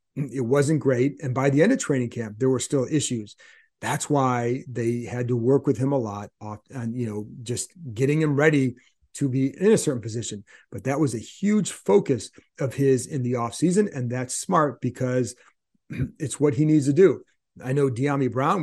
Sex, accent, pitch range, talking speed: male, American, 125-150 Hz, 205 wpm